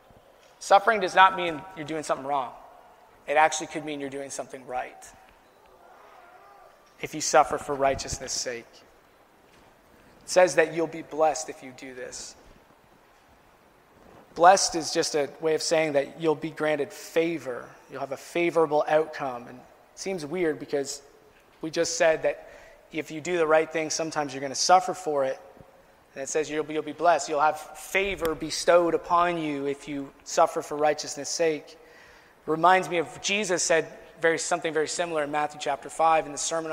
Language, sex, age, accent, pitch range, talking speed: English, male, 20-39, American, 145-165 Hz, 170 wpm